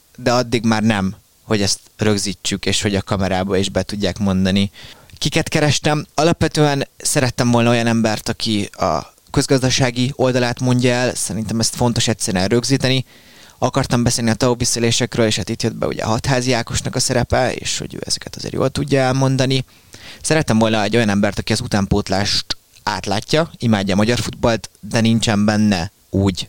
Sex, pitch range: male, 100-120 Hz